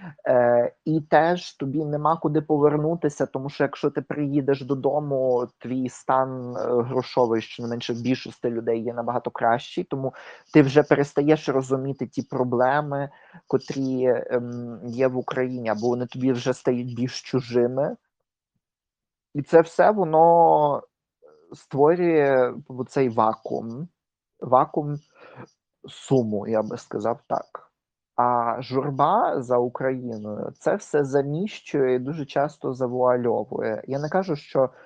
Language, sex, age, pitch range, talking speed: Ukrainian, male, 30-49, 120-145 Hz, 120 wpm